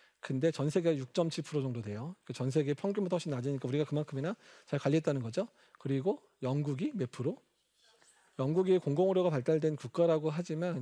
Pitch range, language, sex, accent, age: 140-190 Hz, Korean, male, native, 40-59